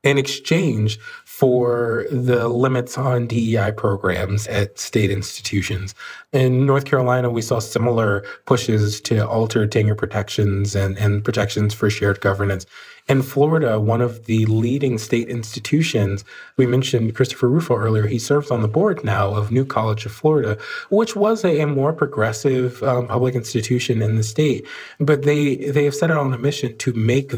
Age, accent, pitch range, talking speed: 20-39, American, 110-135 Hz, 165 wpm